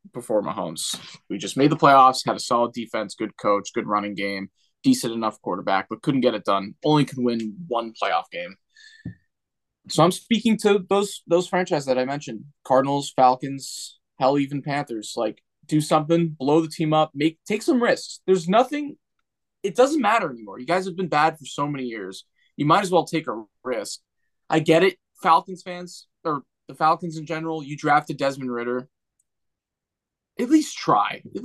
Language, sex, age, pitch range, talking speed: English, male, 20-39, 120-160 Hz, 185 wpm